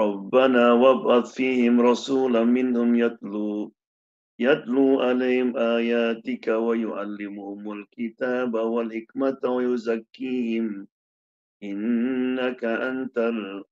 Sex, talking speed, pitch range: male, 65 wpm, 100-125 Hz